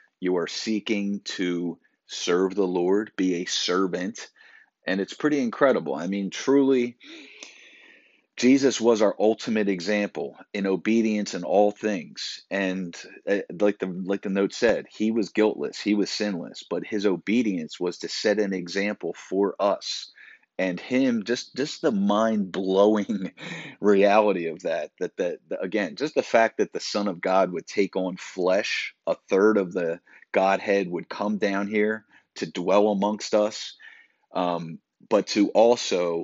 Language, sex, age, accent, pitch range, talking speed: English, male, 40-59, American, 95-110 Hz, 150 wpm